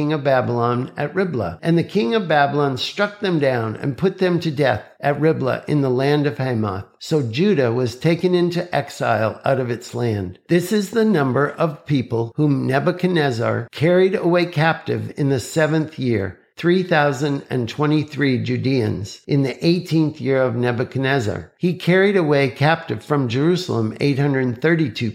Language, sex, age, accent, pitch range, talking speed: English, male, 50-69, American, 120-165 Hz, 155 wpm